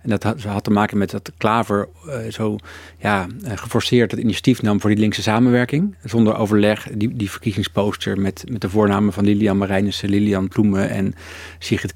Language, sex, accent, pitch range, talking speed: Dutch, male, Dutch, 100-120 Hz, 185 wpm